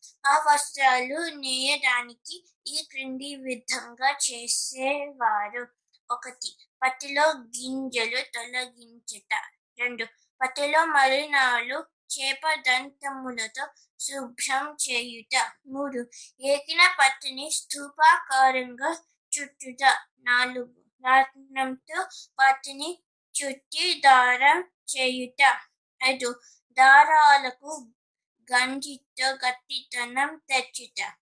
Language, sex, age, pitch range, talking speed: Telugu, female, 20-39, 250-285 Hz, 60 wpm